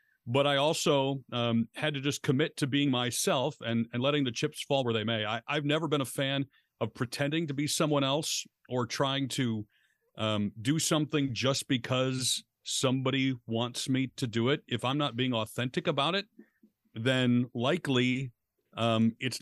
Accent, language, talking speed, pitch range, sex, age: American, English, 175 wpm, 120-150 Hz, male, 40-59